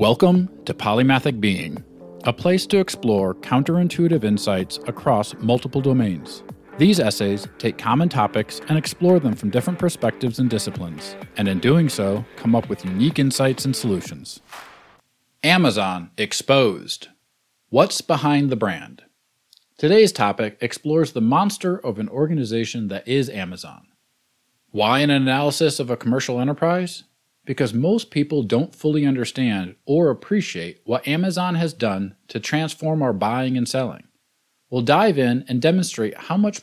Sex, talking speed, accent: male, 140 wpm, American